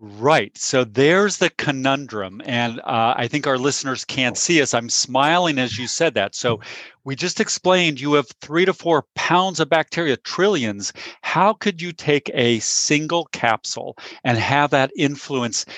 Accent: American